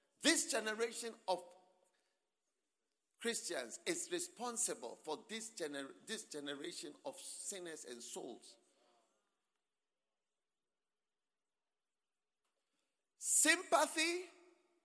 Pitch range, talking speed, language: 210-335 Hz, 65 wpm, English